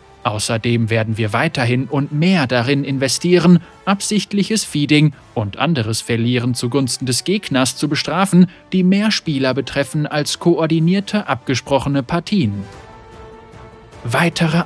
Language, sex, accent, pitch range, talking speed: German, male, German, 120-175 Hz, 110 wpm